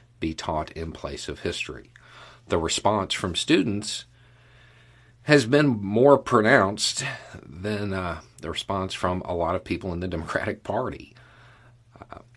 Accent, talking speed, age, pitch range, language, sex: American, 130 wpm, 50-69, 90-120 Hz, English, male